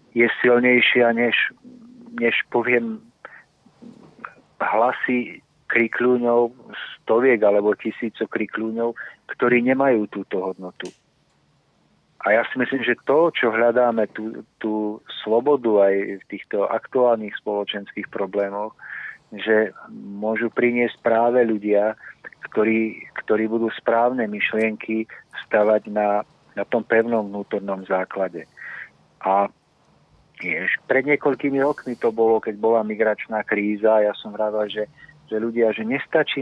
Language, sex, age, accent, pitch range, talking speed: Czech, male, 50-69, native, 110-125 Hz, 110 wpm